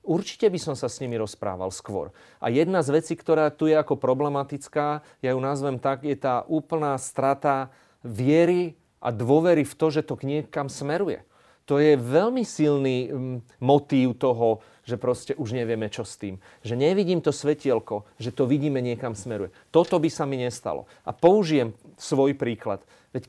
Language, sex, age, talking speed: Slovak, male, 30-49, 175 wpm